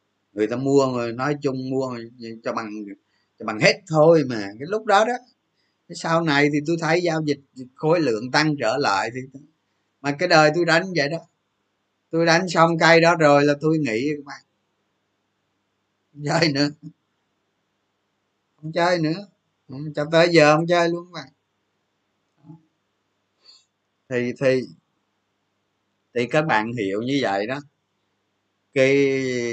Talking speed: 150 wpm